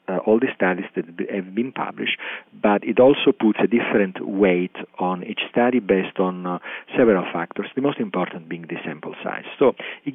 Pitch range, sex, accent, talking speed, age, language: 90-110 Hz, male, Italian, 190 wpm, 40-59, English